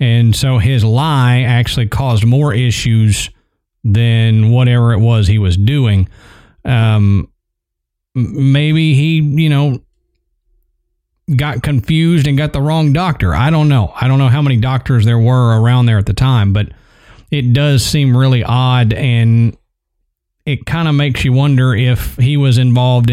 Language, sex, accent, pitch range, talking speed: English, male, American, 115-145 Hz, 155 wpm